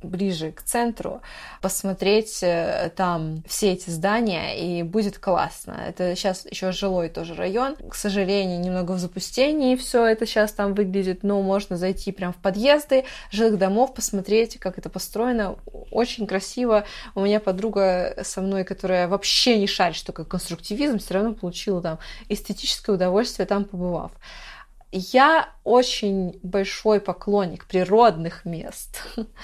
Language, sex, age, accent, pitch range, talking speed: Russian, female, 20-39, native, 190-225 Hz, 135 wpm